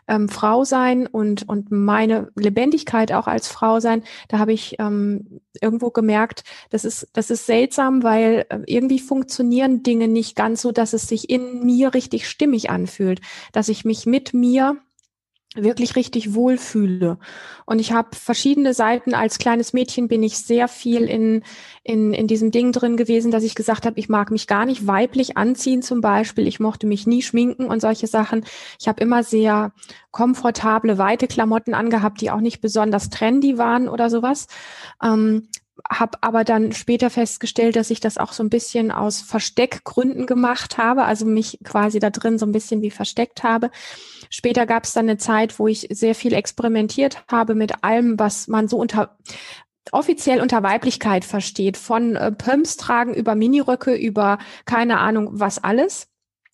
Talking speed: 170 wpm